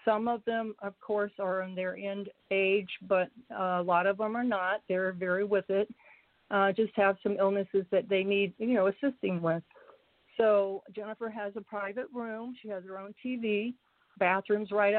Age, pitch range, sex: 50-69, 190-220 Hz, female